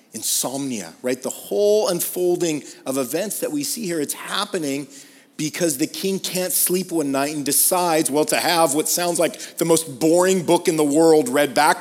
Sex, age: male, 40-59